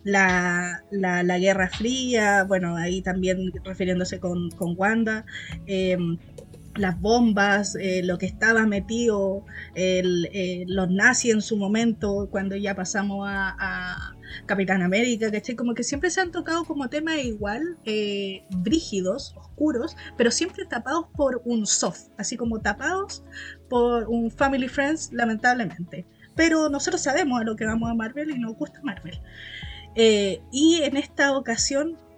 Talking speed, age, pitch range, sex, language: 150 wpm, 20-39, 195-270 Hz, female, Spanish